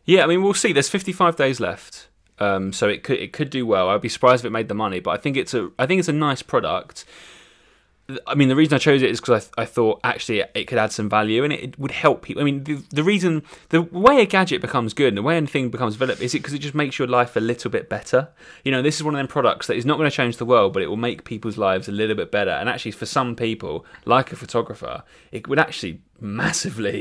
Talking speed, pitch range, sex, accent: 280 wpm, 105-140 Hz, male, British